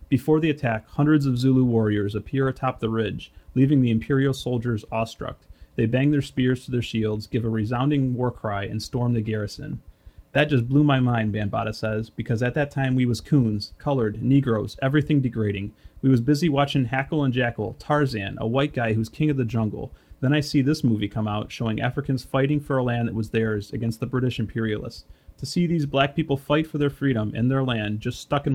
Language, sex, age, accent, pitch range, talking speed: English, male, 30-49, American, 110-135 Hz, 210 wpm